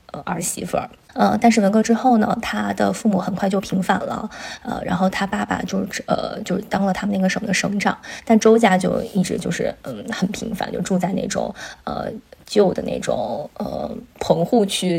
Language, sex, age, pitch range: Chinese, female, 20-39, 185-230 Hz